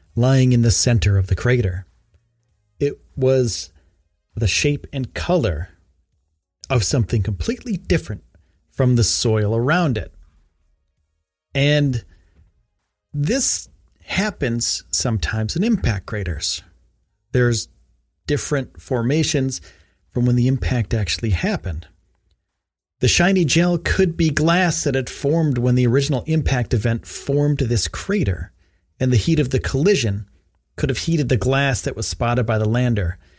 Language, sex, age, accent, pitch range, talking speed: English, male, 40-59, American, 85-140 Hz, 130 wpm